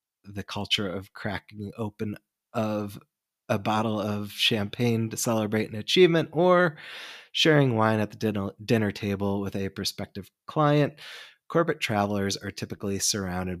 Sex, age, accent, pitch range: male, 20-39, American, 95-125 Hz